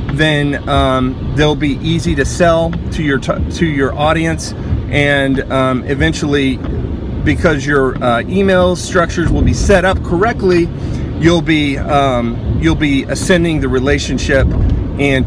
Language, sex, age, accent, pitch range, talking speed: English, male, 30-49, American, 120-150 Hz, 140 wpm